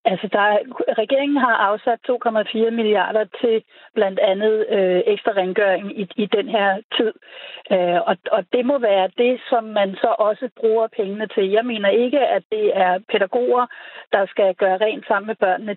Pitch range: 200-250 Hz